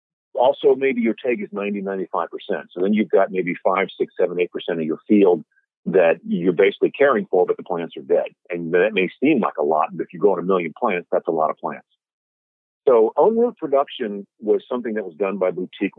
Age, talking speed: 50-69, 220 wpm